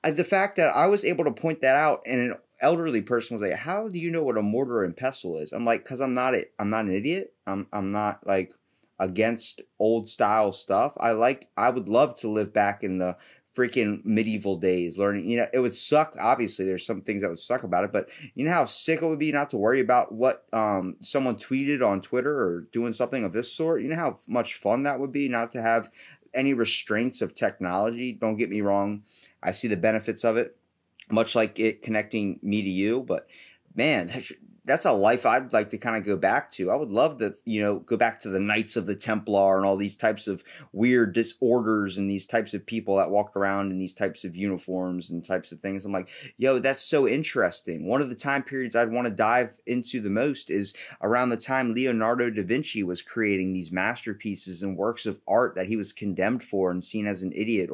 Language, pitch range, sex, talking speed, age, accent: English, 100-125 Hz, male, 235 wpm, 30-49, American